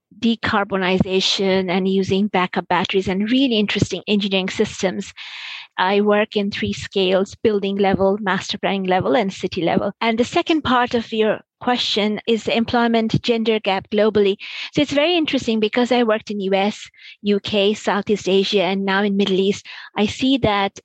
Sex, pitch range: female, 190-220 Hz